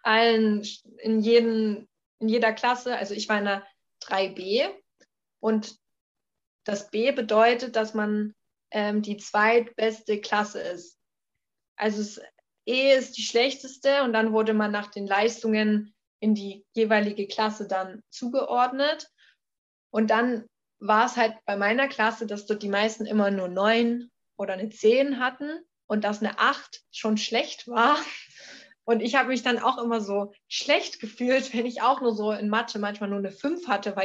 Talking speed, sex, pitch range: 160 wpm, female, 205-235 Hz